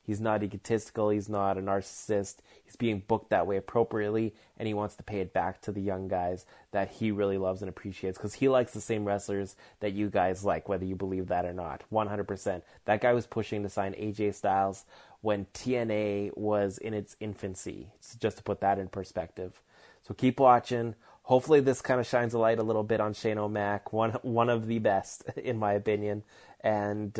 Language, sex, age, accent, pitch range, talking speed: English, male, 20-39, American, 100-120 Hz, 205 wpm